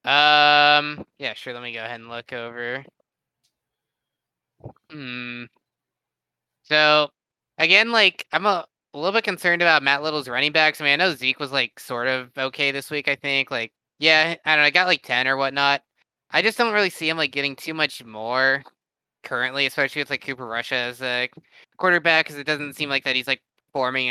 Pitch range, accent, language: 125-150 Hz, American, English